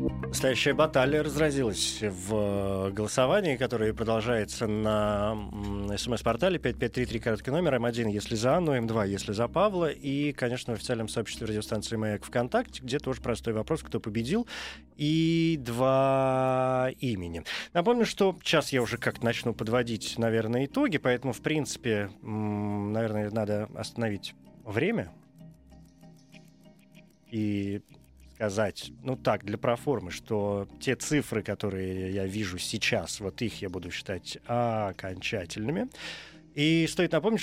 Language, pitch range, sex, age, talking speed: Russian, 105-140 Hz, male, 20-39, 120 wpm